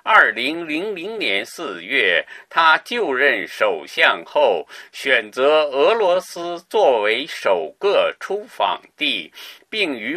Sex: male